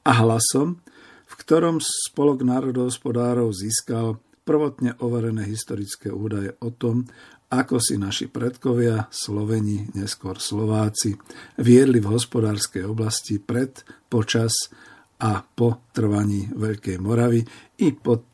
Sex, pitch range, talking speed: male, 110-130 Hz, 110 wpm